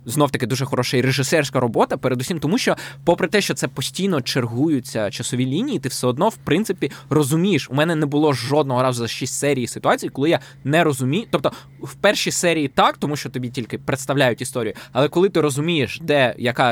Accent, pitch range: native, 130-160 Hz